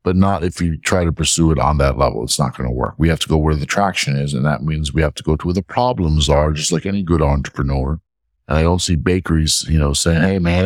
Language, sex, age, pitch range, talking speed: English, male, 50-69, 75-100 Hz, 285 wpm